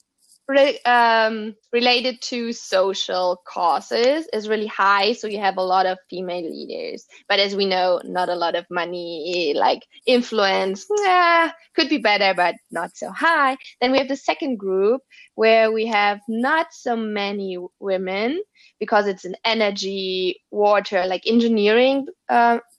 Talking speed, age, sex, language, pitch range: 145 wpm, 20-39, female, English, 190-240 Hz